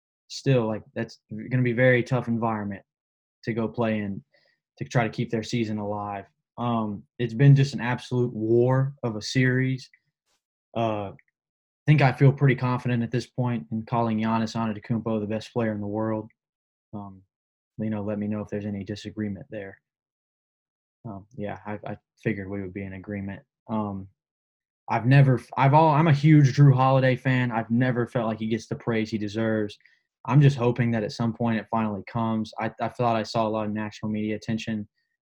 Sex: male